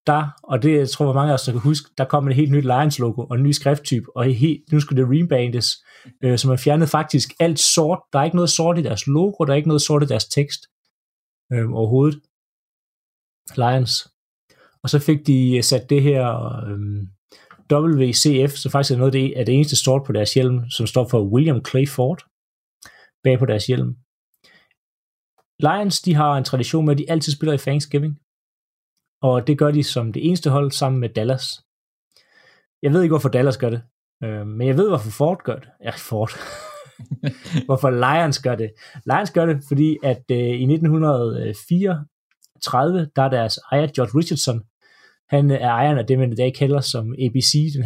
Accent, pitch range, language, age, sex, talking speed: native, 125-150 Hz, Danish, 30-49, male, 195 wpm